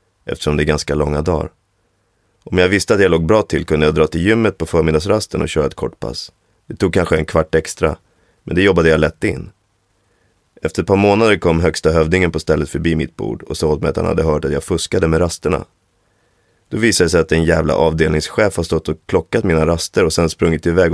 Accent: native